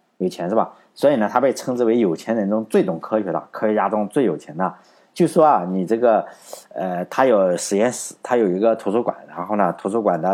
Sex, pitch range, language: male, 95-140 Hz, Chinese